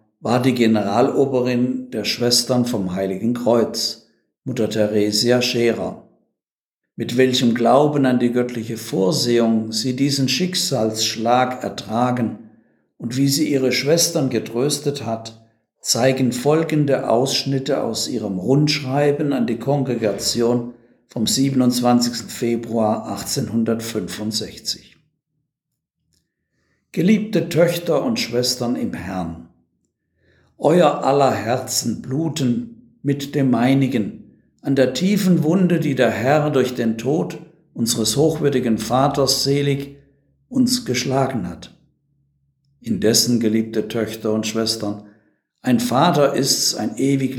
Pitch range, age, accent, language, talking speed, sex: 115-140 Hz, 60-79, German, German, 105 wpm, male